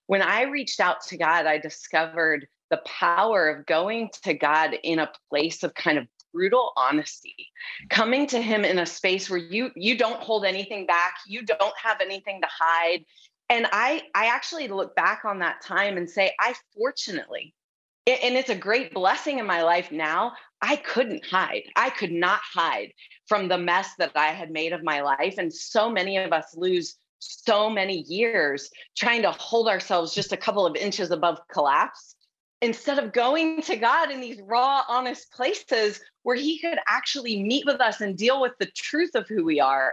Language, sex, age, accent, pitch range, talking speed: English, female, 30-49, American, 175-265 Hz, 190 wpm